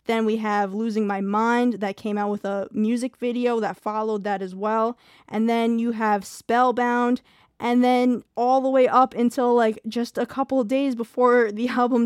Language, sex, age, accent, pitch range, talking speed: English, female, 10-29, American, 220-265 Hz, 195 wpm